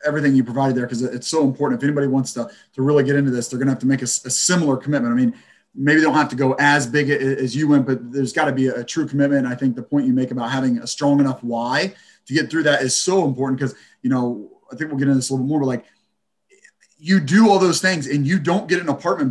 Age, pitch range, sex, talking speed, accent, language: 30-49, 135-190 Hz, male, 285 wpm, American, English